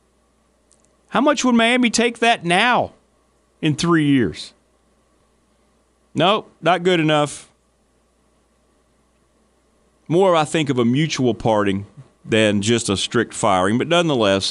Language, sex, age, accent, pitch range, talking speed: English, male, 40-59, American, 105-160 Hz, 115 wpm